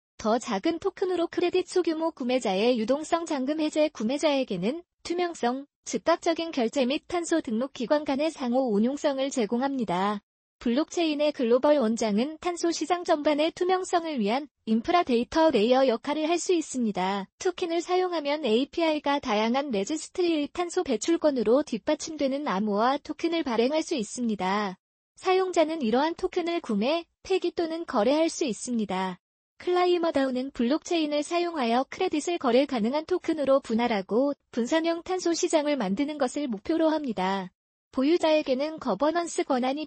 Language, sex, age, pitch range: Korean, female, 20-39, 240-335 Hz